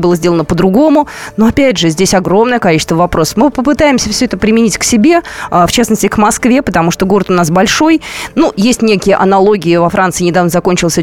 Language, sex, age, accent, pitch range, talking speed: Russian, female, 20-39, native, 180-230 Hz, 190 wpm